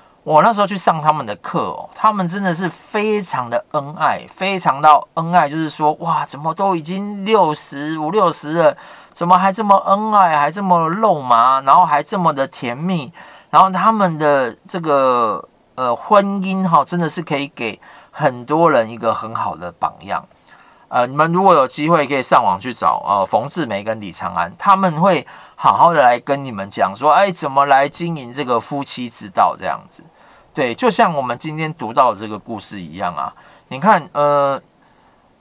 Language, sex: Chinese, male